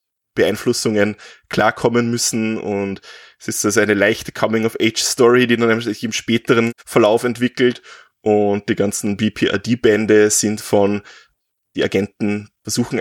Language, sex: German, male